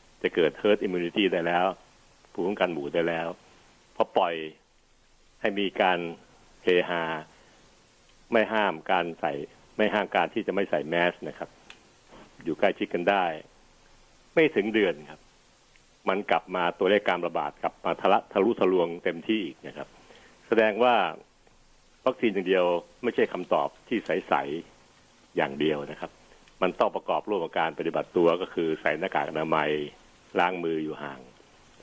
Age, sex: 60-79, male